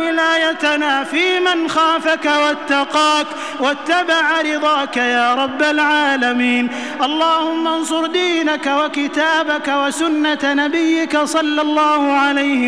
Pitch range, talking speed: 275-310 Hz, 90 wpm